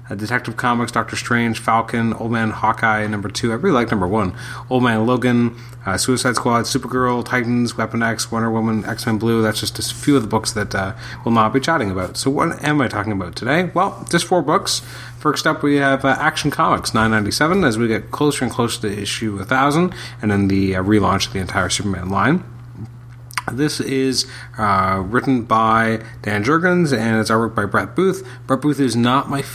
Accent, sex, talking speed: American, male, 200 wpm